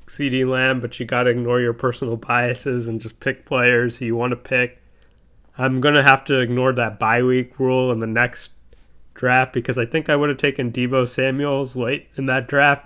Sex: male